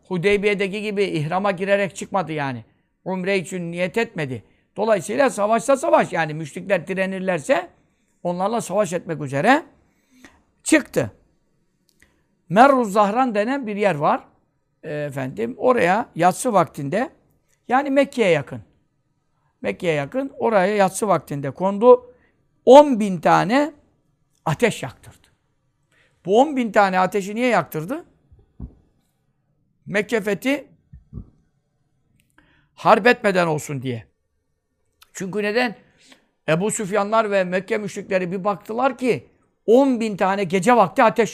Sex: male